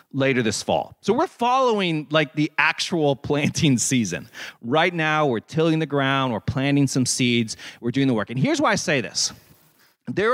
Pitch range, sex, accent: 115-155 Hz, male, American